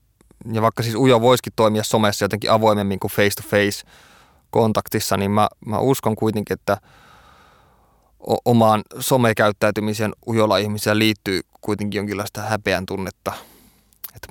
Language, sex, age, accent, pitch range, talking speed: Finnish, male, 20-39, native, 100-115 Hz, 115 wpm